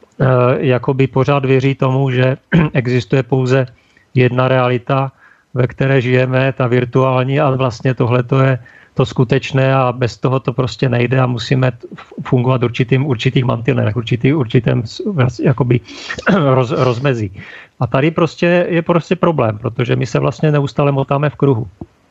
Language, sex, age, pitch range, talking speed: Slovak, male, 40-59, 130-140 Hz, 135 wpm